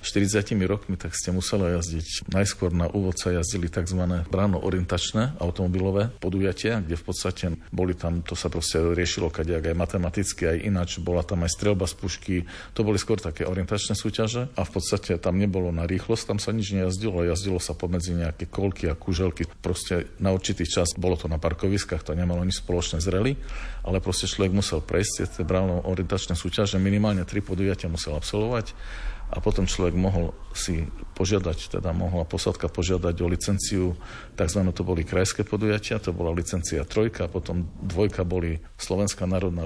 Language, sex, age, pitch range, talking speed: Slovak, male, 50-69, 85-100 Hz, 165 wpm